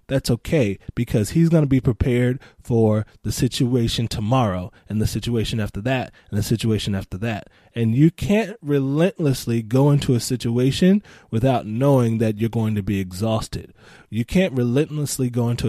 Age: 20-39